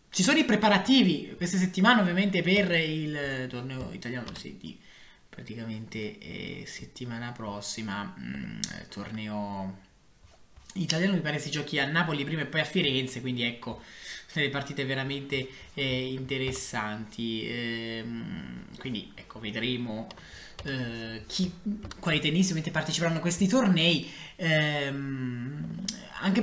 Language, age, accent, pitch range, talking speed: Italian, 20-39, native, 125-175 Hz, 110 wpm